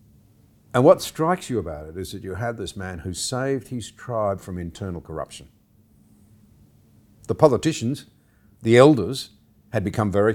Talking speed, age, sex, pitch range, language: 150 wpm, 50-69, male, 90-120 Hz, English